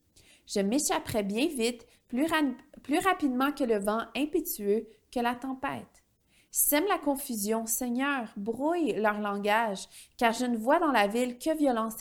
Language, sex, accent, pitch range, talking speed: French, female, Canadian, 215-295 Hz, 150 wpm